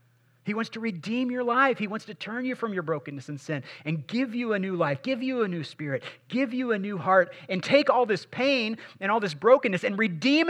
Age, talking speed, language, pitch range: 30-49, 245 wpm, English, 120-180 Hz